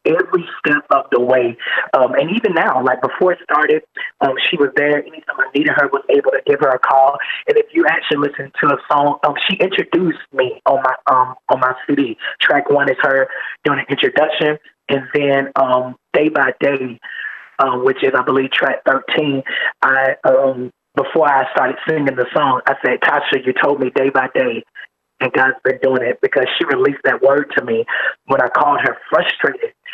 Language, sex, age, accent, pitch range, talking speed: English, male, 20-39, American, 130-160 Hz, 200 wpm